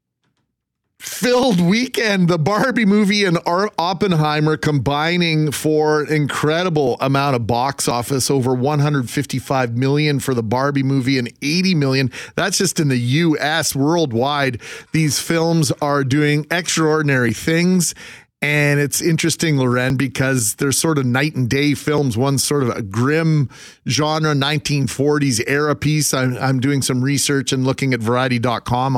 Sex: male